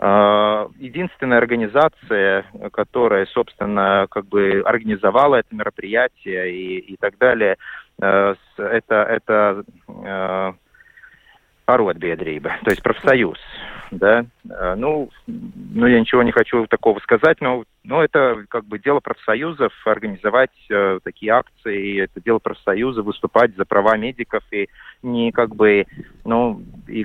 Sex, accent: male, native